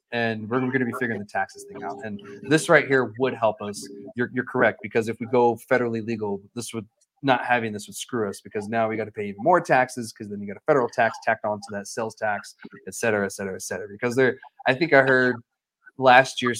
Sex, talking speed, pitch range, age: male, 250 wpm, 110-135 Hz, 20-39